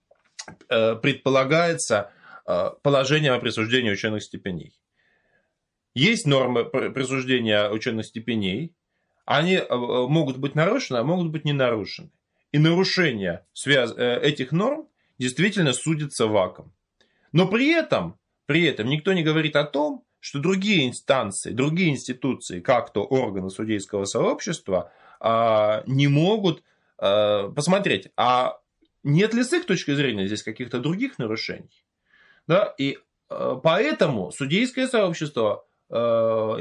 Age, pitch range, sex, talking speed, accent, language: 20-39, 115-175 Hz, male, 110 wpm, native, Russian